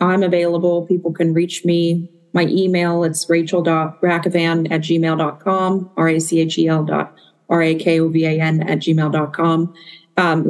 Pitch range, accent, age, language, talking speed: 155-175 Hz, American, 40-59, English, 105 wpm